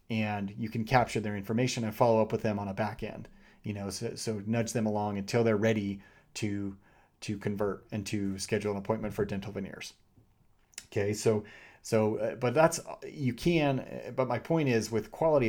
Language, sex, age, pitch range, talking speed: English, male, 30-49, 105-115 Hz, 190 wpm